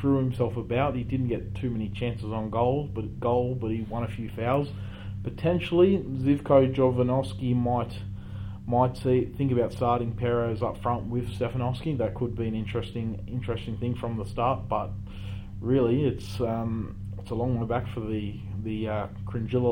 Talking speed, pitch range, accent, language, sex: 170 wpm, 105-125 Hz, Australian, English, male